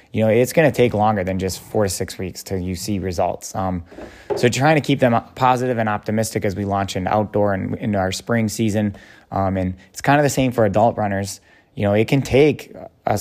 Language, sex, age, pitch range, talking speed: English, male, 20-39, 95-115 Hz, 235 wpm